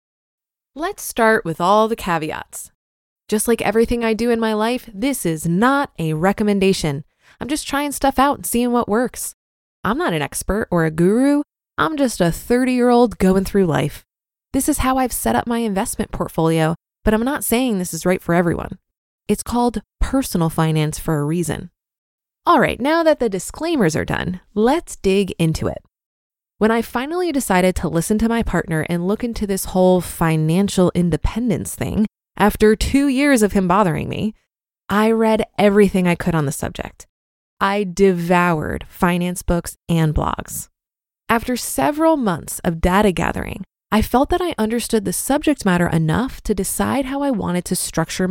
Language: English